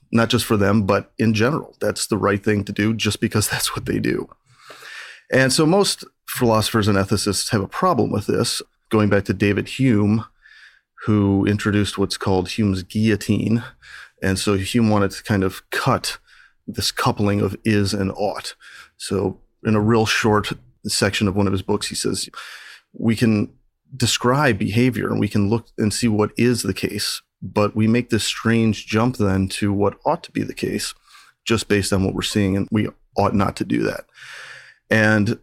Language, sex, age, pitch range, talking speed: English, male, 30-49, 100-115 Hz, 185 wpm